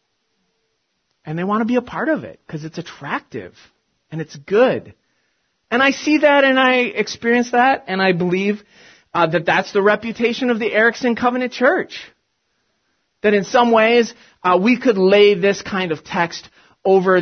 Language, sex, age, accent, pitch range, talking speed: English, male, 30-49, American, 170-230 Hz, 170 wpm